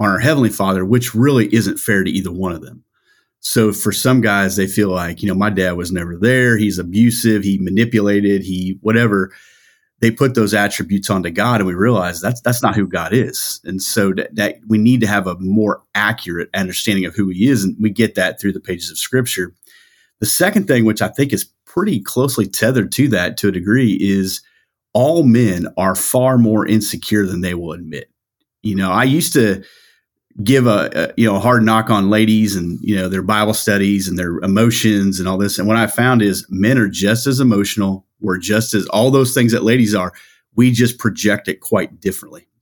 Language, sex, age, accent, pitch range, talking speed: English, male, 40-59, American, 95-115 Hz, 215 wpm